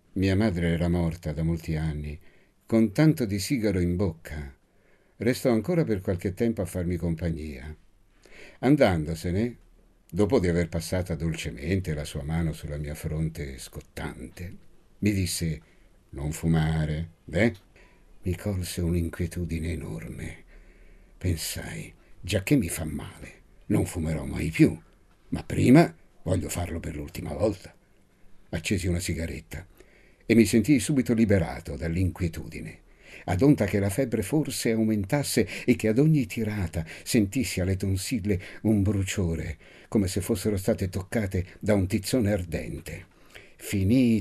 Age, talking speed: 60-79, 130 wpm